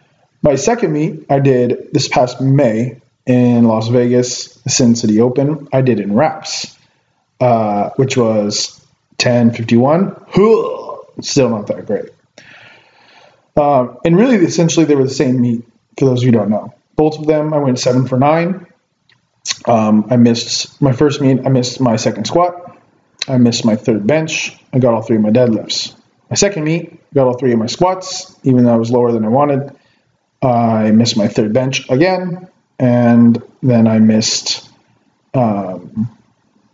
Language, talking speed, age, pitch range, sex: English, 165 wpm, 20-39, 115-155 Hz, male